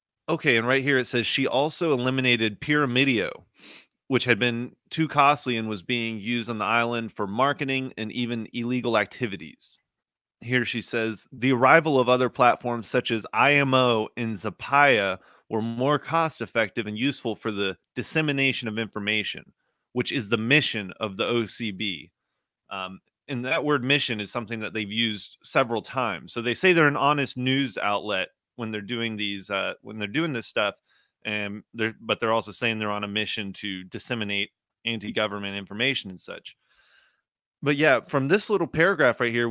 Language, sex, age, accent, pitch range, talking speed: English, male, 30-49, American, 110-135 Hz, 170 wpm